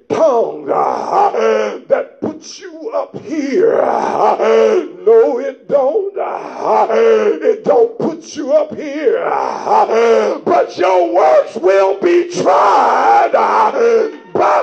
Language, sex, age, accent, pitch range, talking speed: English, male, 50-69, American, 275-450 Hz, 125 wpm